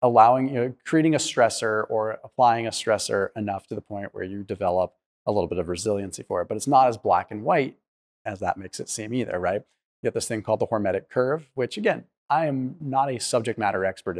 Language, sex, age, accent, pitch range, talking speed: English, male, 30-49, American, 105-125 Hz, 230 wpm